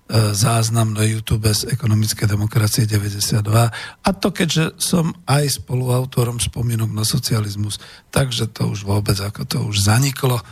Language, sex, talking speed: Slovak, male, 135 wpm